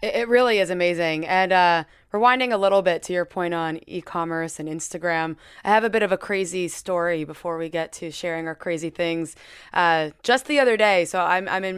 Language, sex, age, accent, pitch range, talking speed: English, female, 20-39, American, 170-215 Hz, 215 wpm